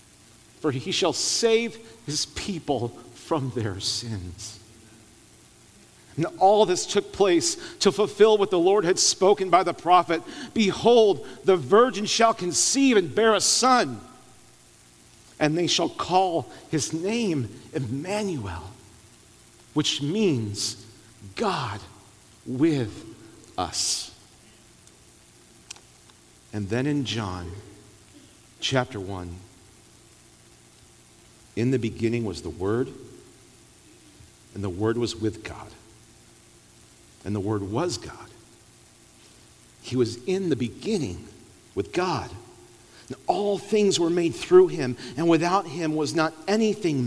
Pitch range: 115-190 Hz